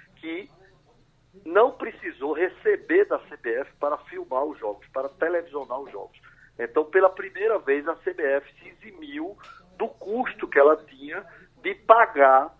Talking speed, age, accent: 140 wpm, 50-69, Brazilian